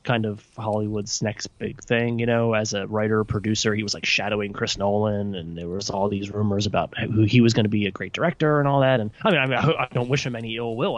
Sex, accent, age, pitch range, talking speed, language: male, American, 20-39, 110-155 Hz, 260 wpm, English